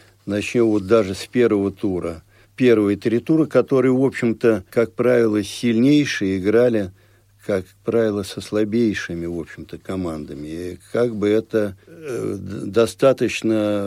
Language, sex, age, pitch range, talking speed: Russian, male, 60-79, 95-115 Hz, 125 wpm